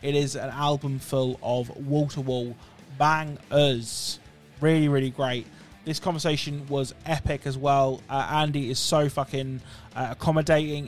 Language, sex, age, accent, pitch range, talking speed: English, male, 20-39, British, 130-150 Hz, 140 wpm